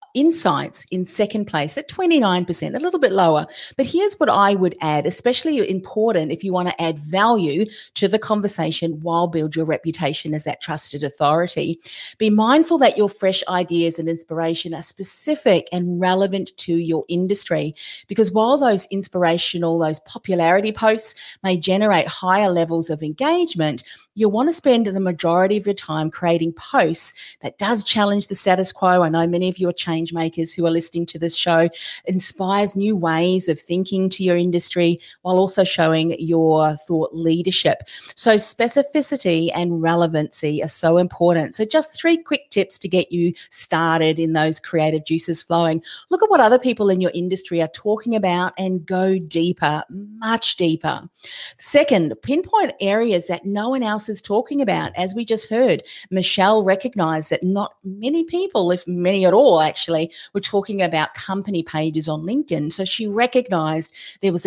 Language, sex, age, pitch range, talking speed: English, female, 40-59, 165-215 Hz, 170 wpm